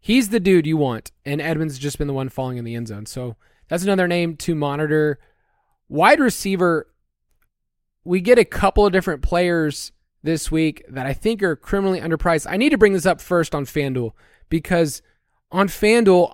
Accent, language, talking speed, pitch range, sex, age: American, English, 190 wpm, 145-180 Hz, male, 20-39